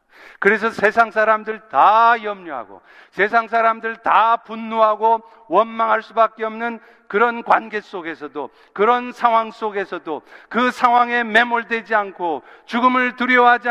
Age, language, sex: 50-69, Korean, male